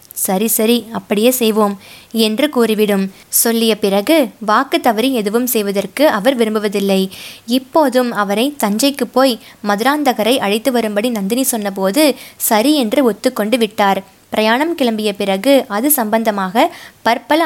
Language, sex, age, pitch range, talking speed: Tamil, female, 20-39, 205-255 Hz, 115 wpm